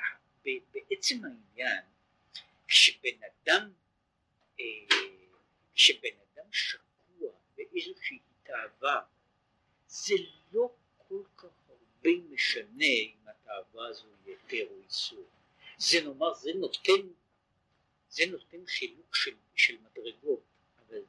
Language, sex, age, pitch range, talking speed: Hebrew, male, 60-79, 360-425 Hz, 90 wpm